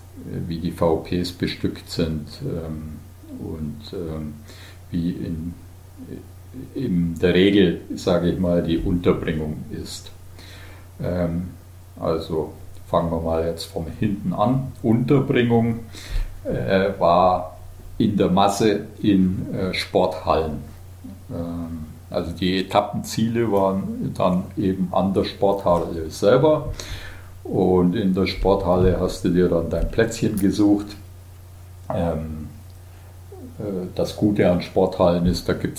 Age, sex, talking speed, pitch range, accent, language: 50-69, male, 110 wpm, 85-95 Hz, German, German